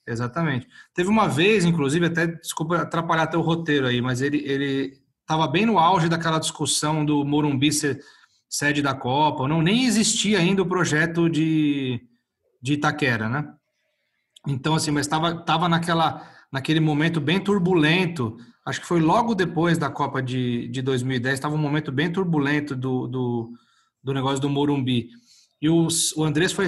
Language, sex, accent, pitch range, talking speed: Portuguese, male, Brazilian, 140-170 Hz, 160 wpm